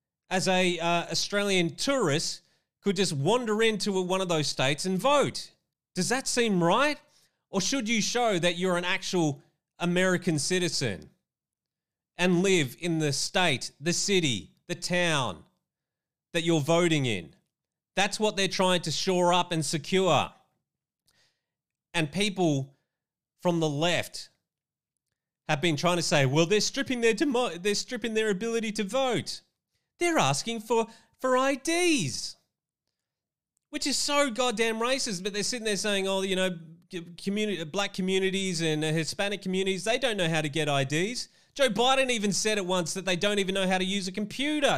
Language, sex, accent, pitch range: English, male, Australian, 155-205 Hz